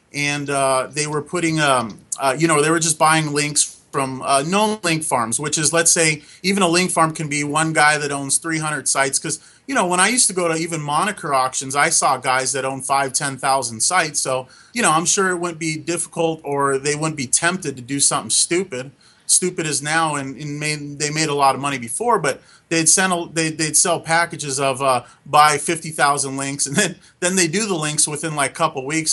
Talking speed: 230 wpm